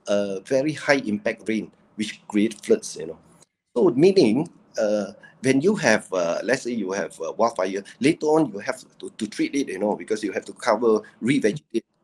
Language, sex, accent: Chinese, male, Malaysian